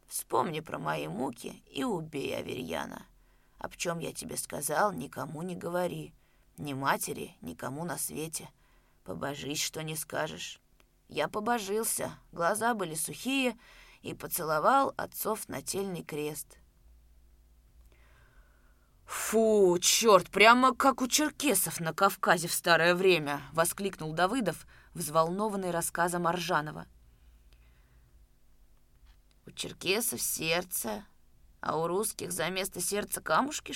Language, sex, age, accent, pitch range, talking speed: Russian, female, 20-39, native, 145-205 Hz, 105 wpm